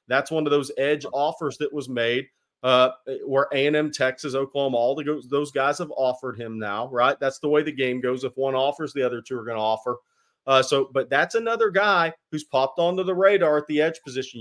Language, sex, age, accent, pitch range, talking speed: English, male, 40-59, American, 130-165 Hz, 225 wpm